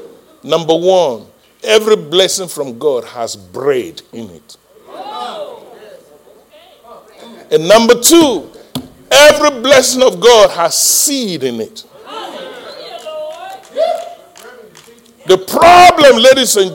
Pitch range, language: 230-340 Hz, English